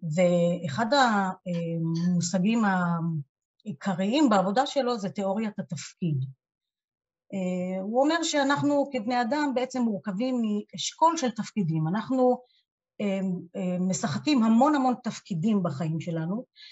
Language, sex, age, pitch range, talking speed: Hebrew, female, 30-49, 190-260 Hz, 90 wpm